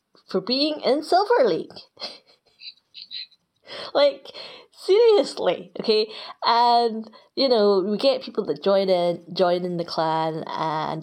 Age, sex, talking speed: 20-39, female, 120 wpm